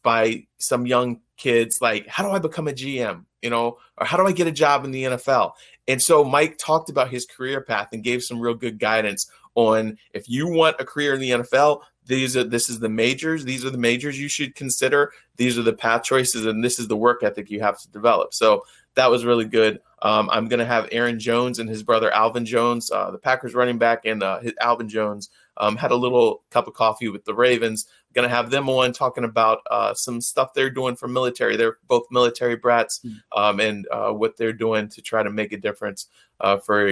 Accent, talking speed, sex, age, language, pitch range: American, 230 wpm, male, 20-39, English, 110-125 Hz